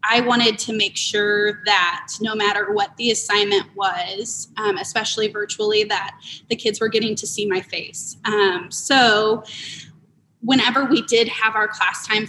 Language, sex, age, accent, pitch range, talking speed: English, female, 20-39, American, 200-230 Hz, 160 wpm